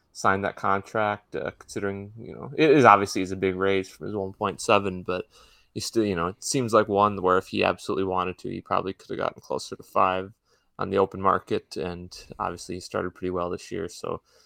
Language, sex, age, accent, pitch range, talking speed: English, male, 20-39, American, 90-105 Hz, 220 wpm